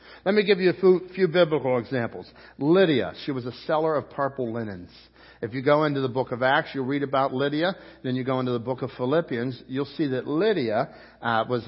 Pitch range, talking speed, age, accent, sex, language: 130-190 Hz, 220 wpm, 50-69, American, male, English